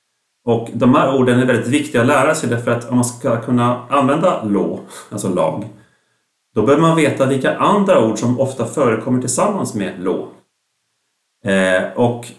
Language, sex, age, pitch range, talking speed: Swedish, male, 40-59, 105-130 Hz, 170 wpm